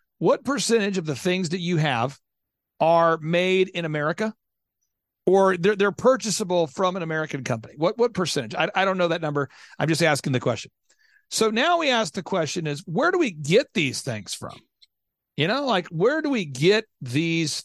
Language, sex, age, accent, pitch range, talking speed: English, male, 40-59, American, 150-220 Hz, 190 wpm